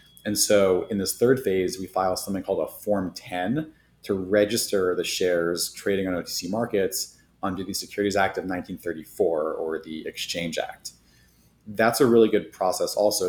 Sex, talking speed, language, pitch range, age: male, 165 wpm, English, 85-105 Hz, 30-49